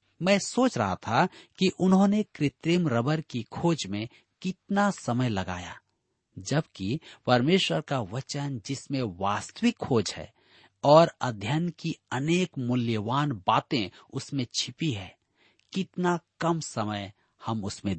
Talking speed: 120 wpm